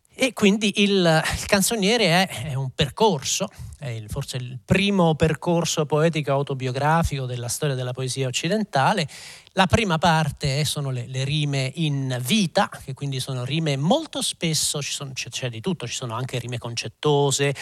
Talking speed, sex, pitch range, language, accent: 155 wpm, male, 130-185 Hz, Italian, native